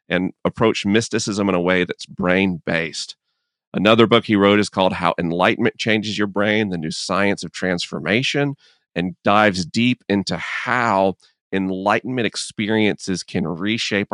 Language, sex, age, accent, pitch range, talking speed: English, male, 40-59, American, 95-115 Hz, 140 wpm